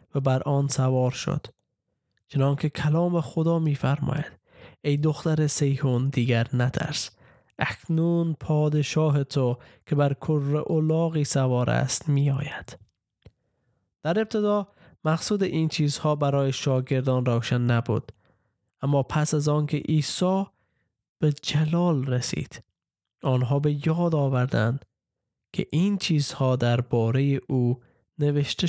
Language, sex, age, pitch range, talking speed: Persian, male, 20-39, 130-160 Hz, 105 wpm